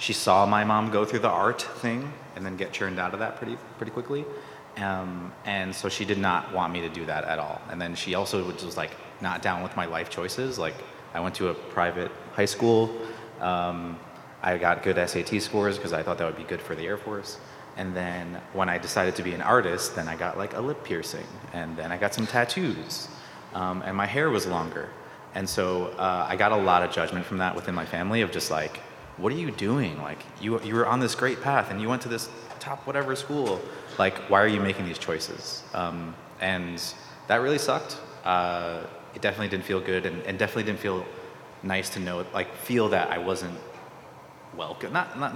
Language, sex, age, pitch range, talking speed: English, male, 30-49, 90-115 Hz, 225 wpm